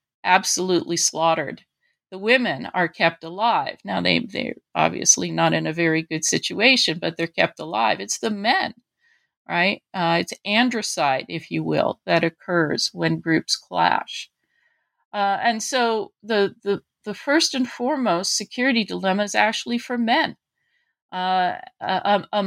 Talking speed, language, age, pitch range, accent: 140 wpm, English, 50-69, 180-240 Hz, American